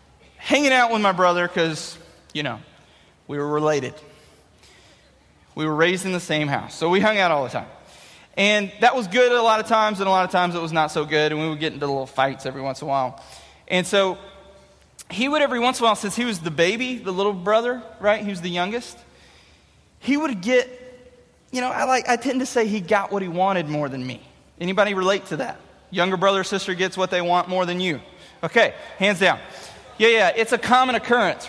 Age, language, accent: 20-39, English, American